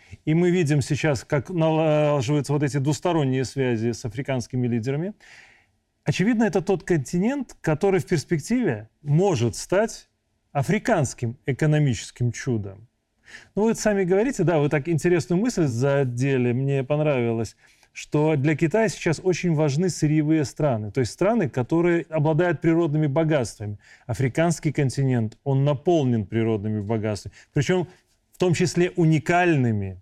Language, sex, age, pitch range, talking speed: Russian, male, 30-49, 120-170 Hz, 130 wpm